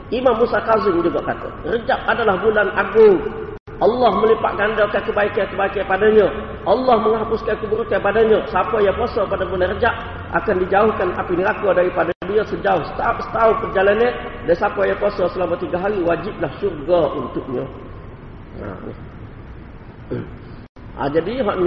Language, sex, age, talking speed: Malay, male, 40-59, 135 wpm